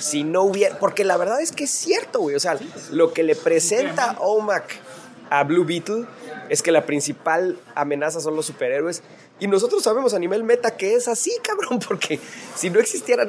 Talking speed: 195 wpm